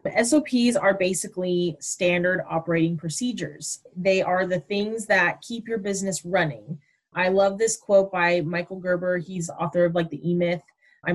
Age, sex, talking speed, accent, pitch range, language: 20-39, female, 160 wpm, American, 175-215 Hz, English